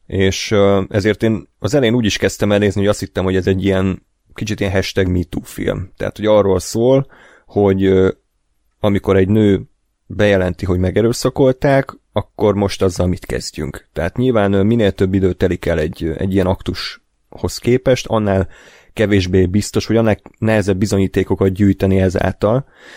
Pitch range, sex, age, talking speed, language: 95-110 Hz, male, 30-49, 155 wpm, Hungarian